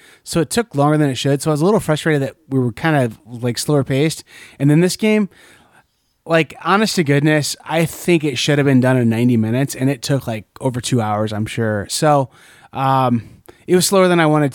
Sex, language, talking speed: male, English, 230 wpm